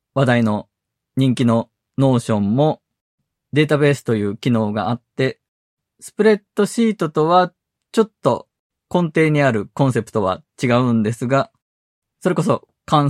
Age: 20-39